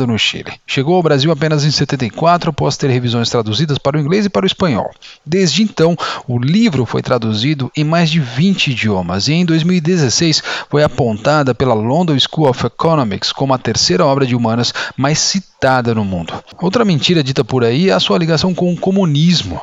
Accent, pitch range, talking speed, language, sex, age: Brazilian, 125-170 Hz, 190 wpm, Portuguese, male, 40-59